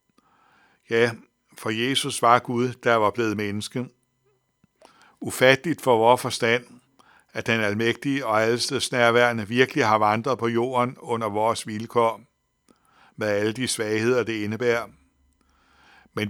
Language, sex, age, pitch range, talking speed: Danish, male, 60-79, 110-125 Hz, 120 wpm